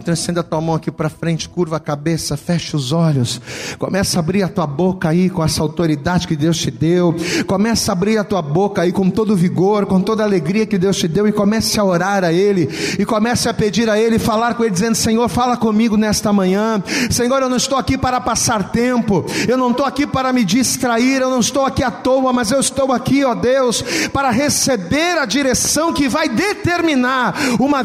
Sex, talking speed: male, 215 wpm